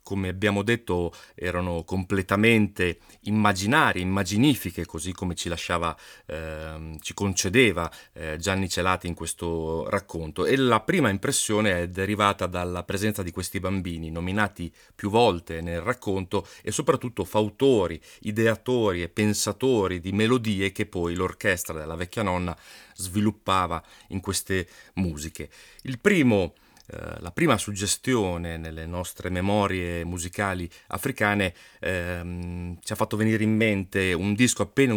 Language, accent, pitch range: Italian, native, 85-105 Hz